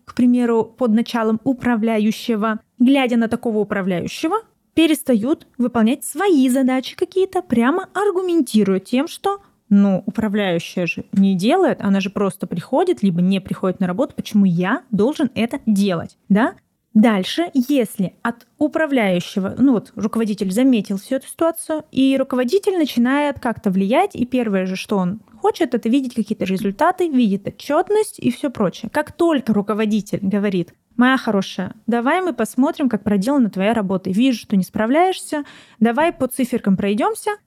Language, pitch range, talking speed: Russian, 210-290 Hz, 145 wpm